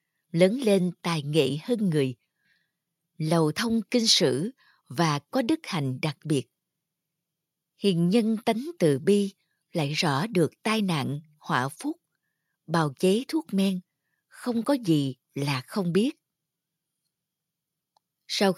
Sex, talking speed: female, 125 wpm